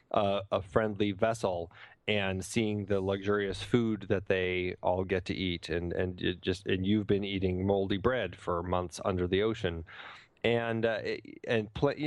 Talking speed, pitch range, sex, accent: 165 wpm, 95-120 Hz, male, American